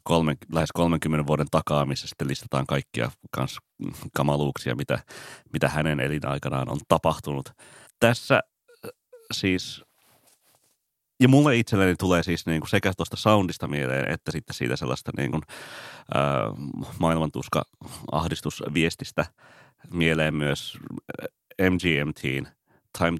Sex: male